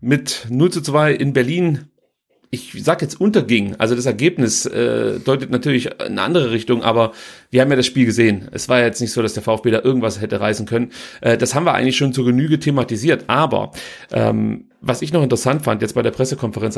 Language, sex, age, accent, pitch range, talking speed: German, male, 40-59, German, 120-150 Hz, 215 wpm